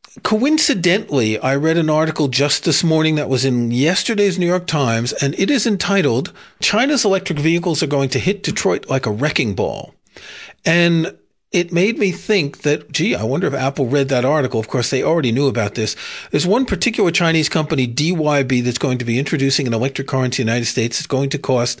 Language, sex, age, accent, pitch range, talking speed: English, male, 40-59, American, 125-165 Hz, 205 wpm